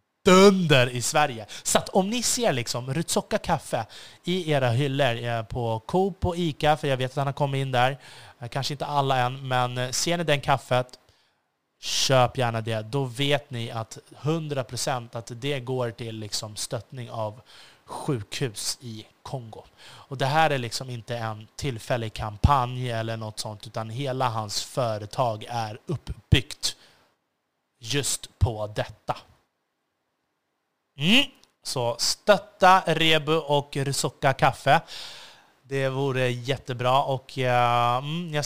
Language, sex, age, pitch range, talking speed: Swedish, male, 30-49, 120-150 Hz, 135 wpm